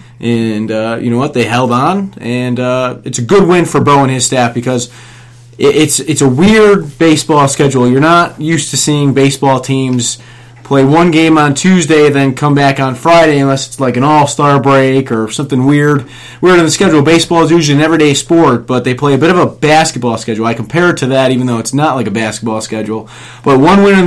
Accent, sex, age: American, male, 30-49